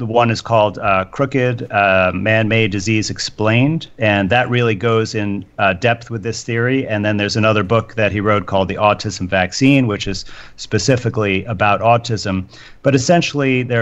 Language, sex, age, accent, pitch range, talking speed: English, male, 40-59, American, 100-125 Hz, 175 wpm